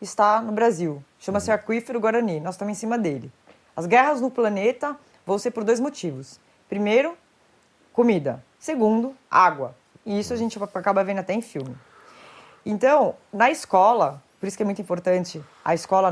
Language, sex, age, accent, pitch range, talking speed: Portuguese, female, 20-39, Brazilian, 185-235 Hz, 165 wpm